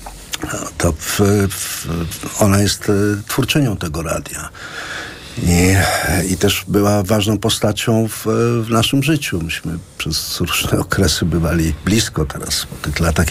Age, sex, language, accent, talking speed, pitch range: 50-69, male, Polish, native, 125 wpm, 90-105 Hz